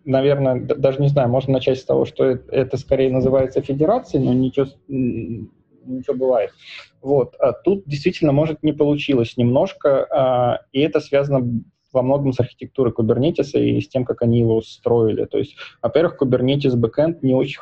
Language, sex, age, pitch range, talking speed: Russian, male, 20-39, 120-135 Hz, 160 wpm